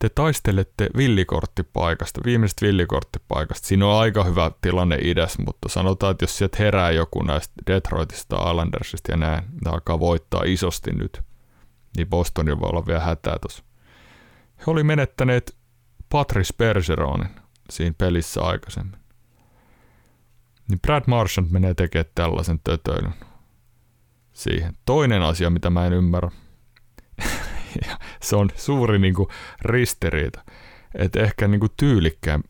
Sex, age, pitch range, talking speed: male, 30-49, 85-115 Hz, 120 wpm